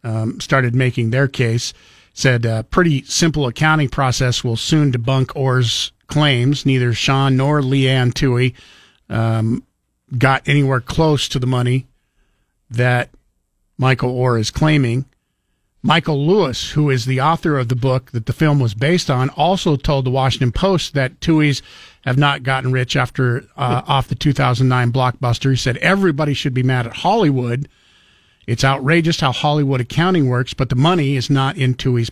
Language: English